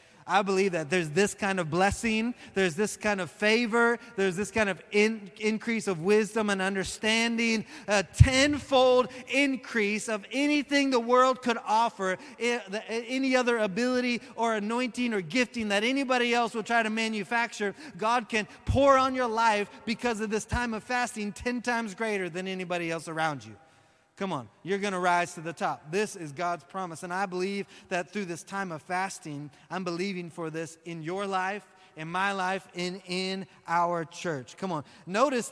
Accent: American